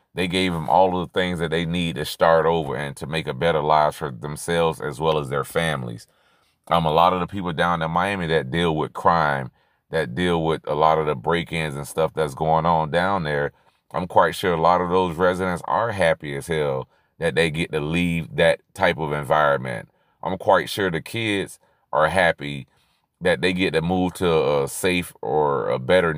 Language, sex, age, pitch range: English, male, 30-49, 80-90 Hz